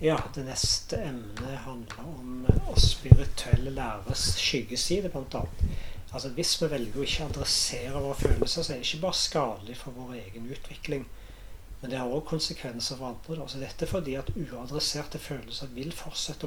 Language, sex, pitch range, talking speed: English, male, 120-145 Hz, 160 wpm